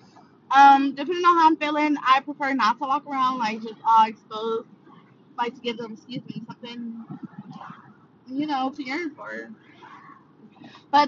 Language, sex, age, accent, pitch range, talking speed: English, female, 20-39, American, 225-280 Hz, 155 wpm